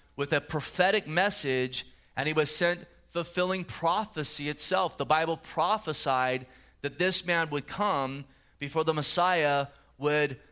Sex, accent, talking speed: male, American, 130 wpm